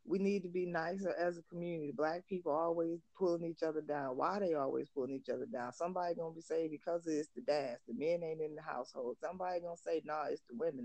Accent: American